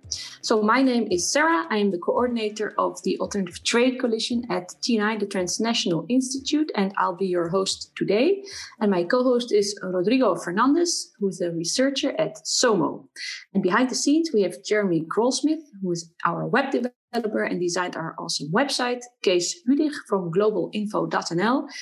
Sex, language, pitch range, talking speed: female, English, 185-250 Hz, 160 wpm